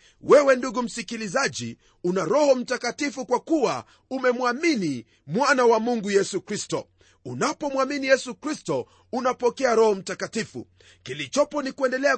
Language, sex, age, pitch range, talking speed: Swahili, male, 40-59, 175-260 Hz, 115 wpm